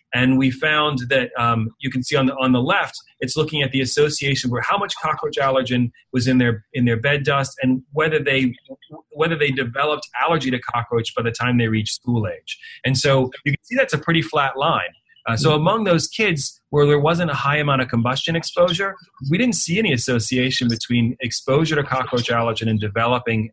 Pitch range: 120-155 Hz